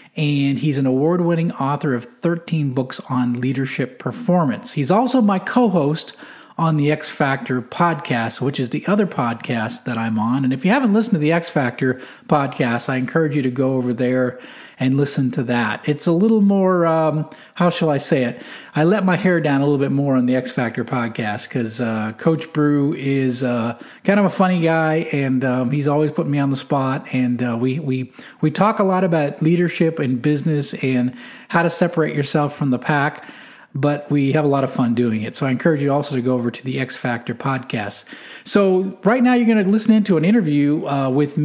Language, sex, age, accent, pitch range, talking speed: English, male, 40-59, American, 130-170 Hz, 215 wpm